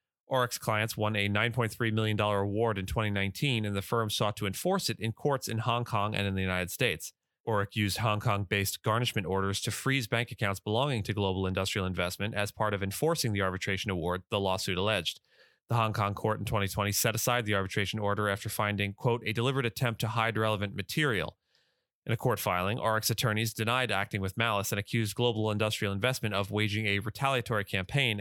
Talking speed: 195 wpm